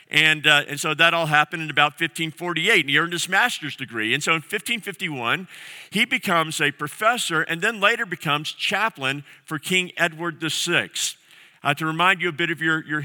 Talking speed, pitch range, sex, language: 195 wpm, 140-170 Hz, male, English